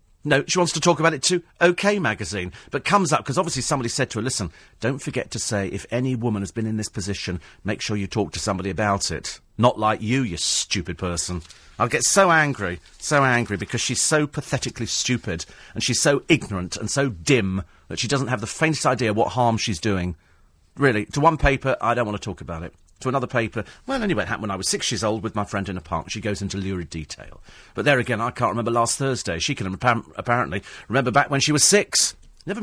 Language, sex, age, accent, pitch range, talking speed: English, male, 40-59, British, 100-145 Hz, 235 wpm